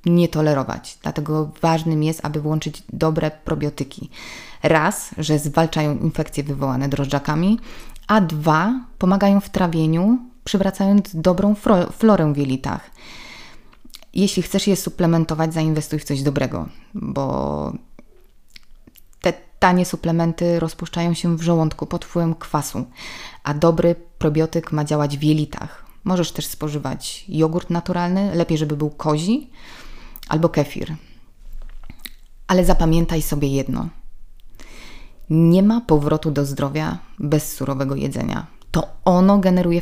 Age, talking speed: 20-39, 120 wpm